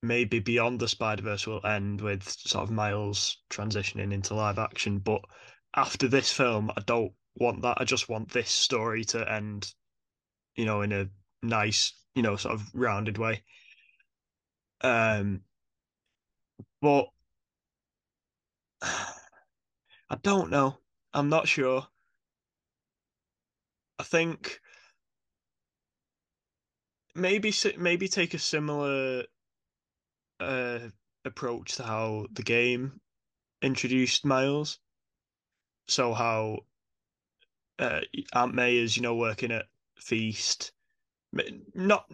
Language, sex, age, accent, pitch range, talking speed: English, male, 10-29, British, 105-130 Hz, 105 wpm